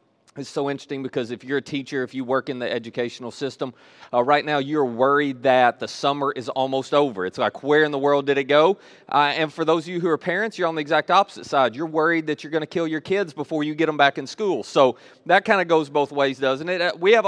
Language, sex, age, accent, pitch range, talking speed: English, male, 30-49, American, 130-160 Hz, 265 wpm